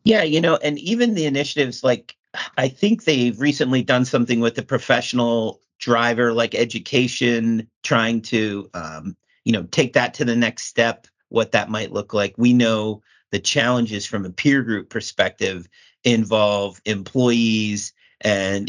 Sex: male